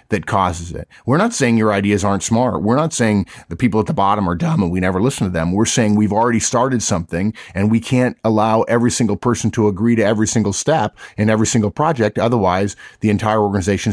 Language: English